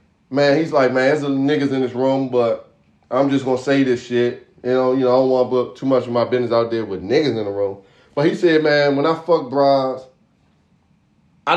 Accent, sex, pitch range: American, male, 120-145 Hz